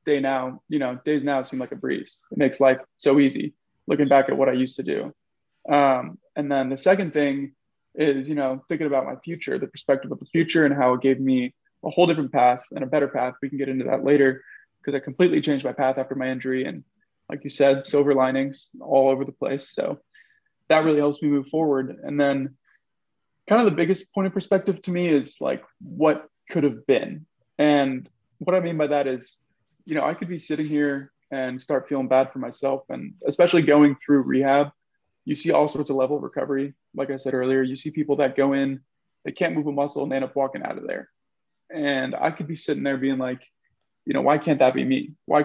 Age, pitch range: 20-39, 135-150 Hz